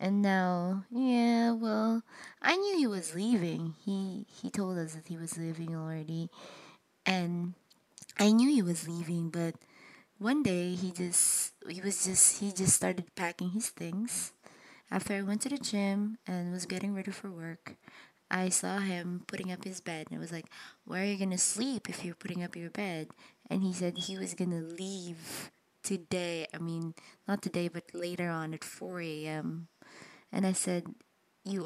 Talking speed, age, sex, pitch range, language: 180 wpm, 20-39, female, 170-200 Hz, English